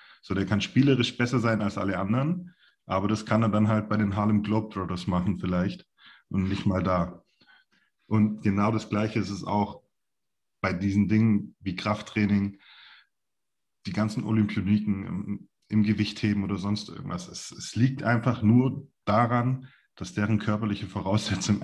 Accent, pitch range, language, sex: German, 100-115 Hz, German, male